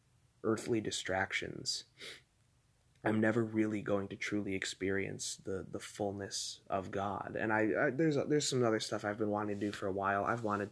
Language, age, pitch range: English, 20-39, 100-115 Hz